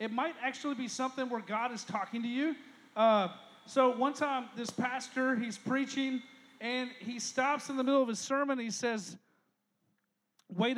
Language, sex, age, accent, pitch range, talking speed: English, male, 40-59, American, 230-295 Hz, 175 wpm